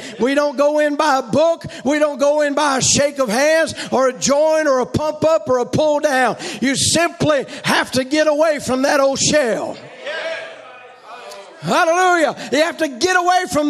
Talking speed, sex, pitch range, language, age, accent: 195 wpm, male, 265-310 Hz, English, 50-69, American